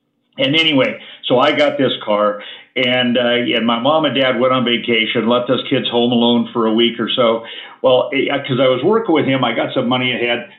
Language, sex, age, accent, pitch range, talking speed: English, male, 50-69, American, 120-140 Hz, 225 wpm